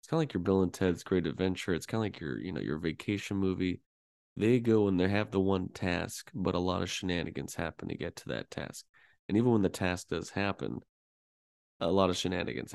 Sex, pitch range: male, 85-100 Hz